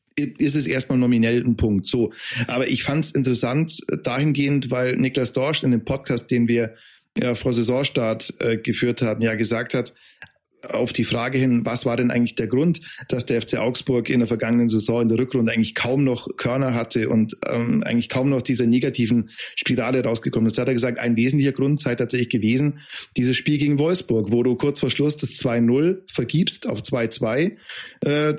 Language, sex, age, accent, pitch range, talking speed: German, male, 40-59, German, 120-140 Hz, 190 wpm